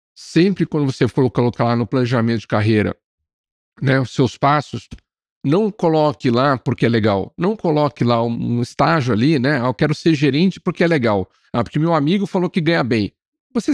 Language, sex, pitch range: Portuguese, male, 120-165 Hz